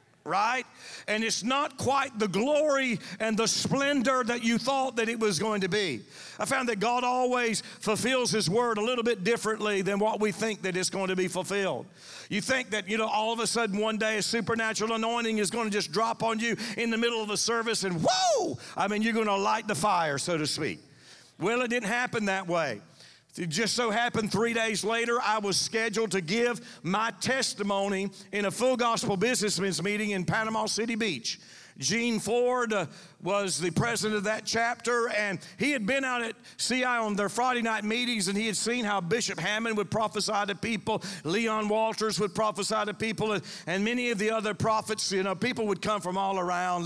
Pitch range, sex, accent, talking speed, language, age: 190-230 Hz, male, American, 210 wpm, English, 50-69